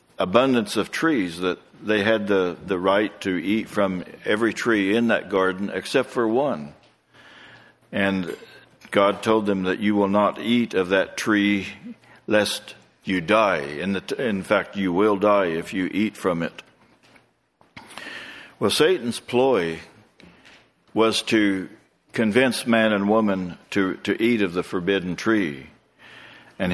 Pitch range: 95-115 Hz